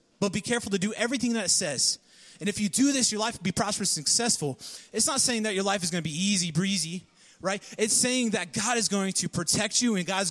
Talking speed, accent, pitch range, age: 260 wpm, American, 180-225 Hz, 30-49